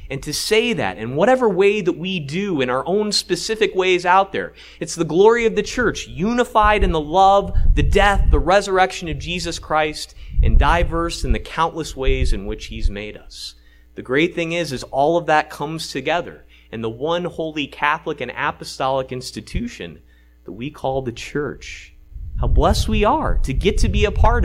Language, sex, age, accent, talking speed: English, male, 30-49, American, 190 wpm